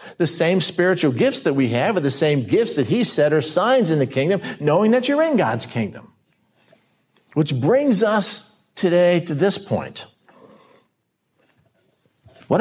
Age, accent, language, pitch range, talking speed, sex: 50-69, American, English, 135-180 Hz, 155 wpm, male